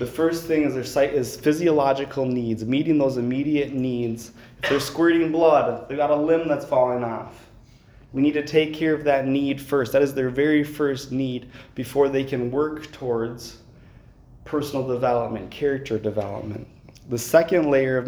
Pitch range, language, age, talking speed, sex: 115-140 Hz, English, 20-39, 175 wpm, male